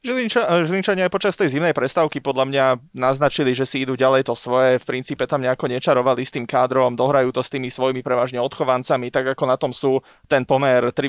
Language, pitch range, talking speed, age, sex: Slovak, 125-140 Hz, 205 wpm, 20-39, male